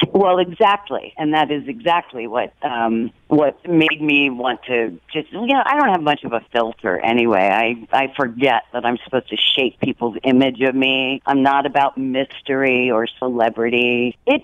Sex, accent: female, American